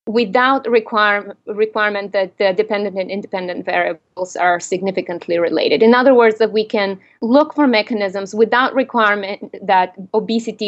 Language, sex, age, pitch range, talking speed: English, female, 30-49, 185-230 Hz, 135 wpm